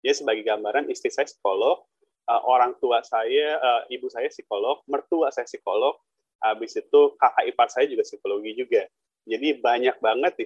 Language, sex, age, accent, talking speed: Indonesian, male, 20-39, native, 160 wpm